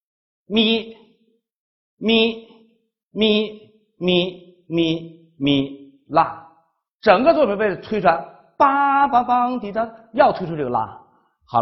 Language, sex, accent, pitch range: Chinese, male, native, 140-210 Hz